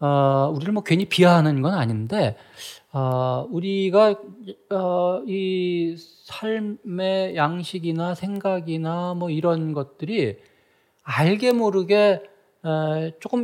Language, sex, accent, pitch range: Korean, male, native, 150-210 Hz